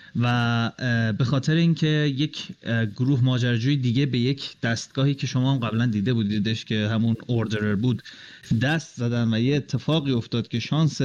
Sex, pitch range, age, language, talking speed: male, 115-140 Hz, 30-49, Persian, 150 wpm